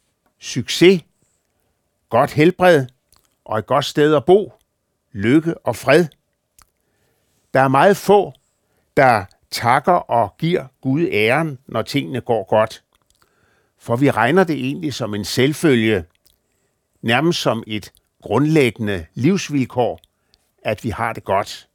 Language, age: Danish, 60-79